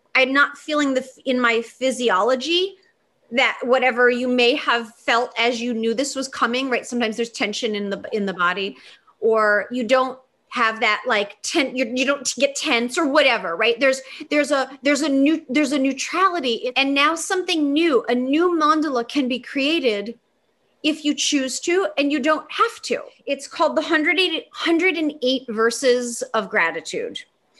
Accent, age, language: American, 30-49, English